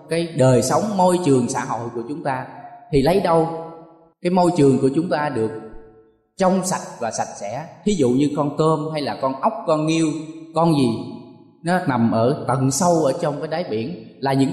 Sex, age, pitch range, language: male, 20-39, 125-175 Hz, Thai